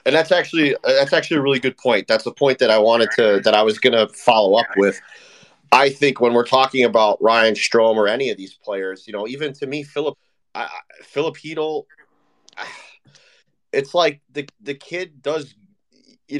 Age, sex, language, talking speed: 30-49, male, English, 190 wpm